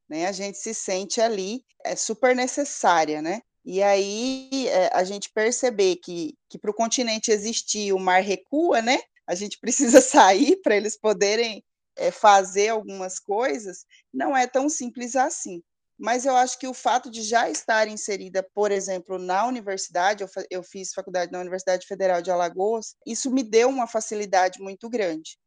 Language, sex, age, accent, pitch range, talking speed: Portuguese, female, 20-39, Brazilian, 190-240 Hz, 160 wpm